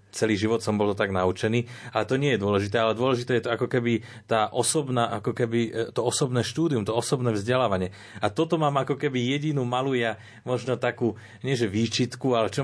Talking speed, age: 195 wpm, 30-49